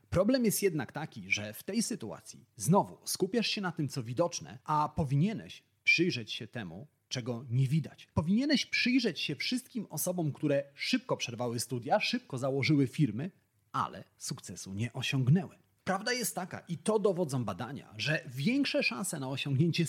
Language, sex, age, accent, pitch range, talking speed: Polish, male, 30-49, native, 130-185 Hz, 155 wpm